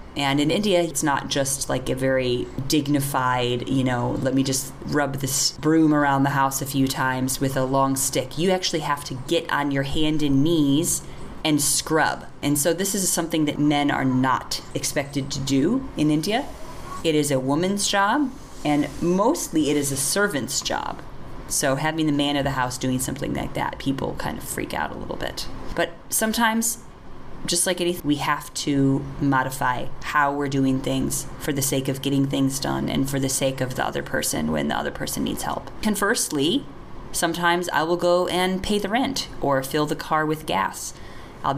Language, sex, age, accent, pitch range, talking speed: English, female, 30-49, American, 130-155 Hz, 195 wpm